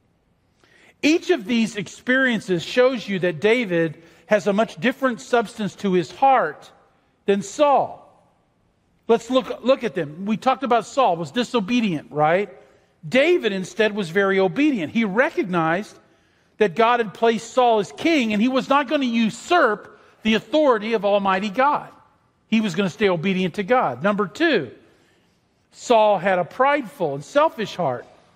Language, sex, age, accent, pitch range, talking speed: English, male, 50-69, American, 190-255 Hz, 155 wpm